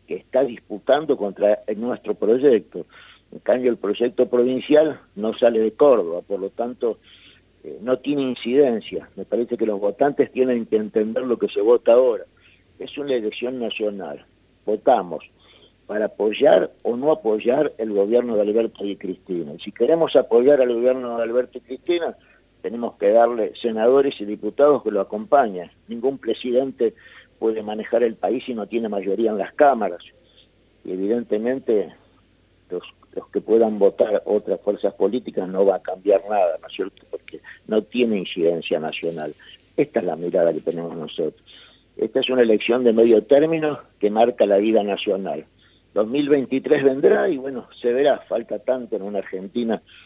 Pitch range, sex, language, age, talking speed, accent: 105-145 Hz, male, Spanish, 50-69, 160 wpm, Argentinian